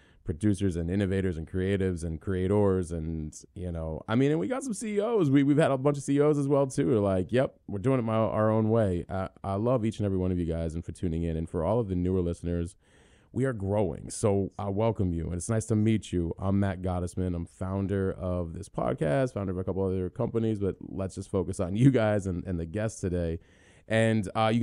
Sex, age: male, 30-49